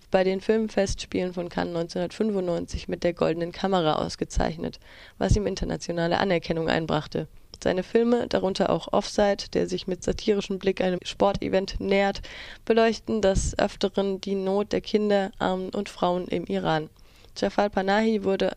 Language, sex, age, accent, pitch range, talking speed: German, female, 20-39, German, 175-200 Hz, 140 wpm